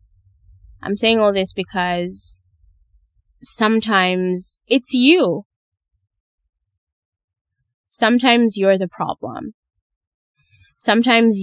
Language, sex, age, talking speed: English, female, 20-39, 70 wpm